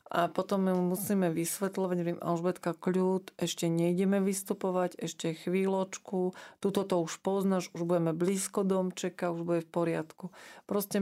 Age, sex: 40-59, female